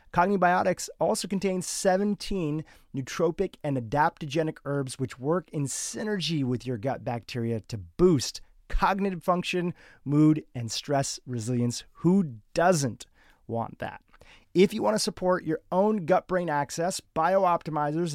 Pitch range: 130-180 Hz